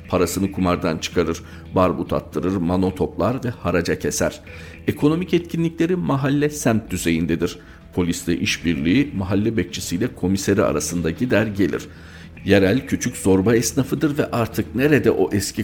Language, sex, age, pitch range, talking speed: Turkish, male, 50-69, 85-100 Hz, 125 wpm